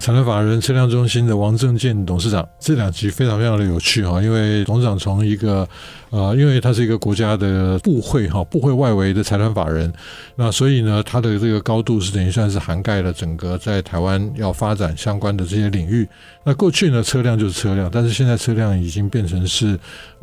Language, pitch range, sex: Chinese, 95-120 Hz, male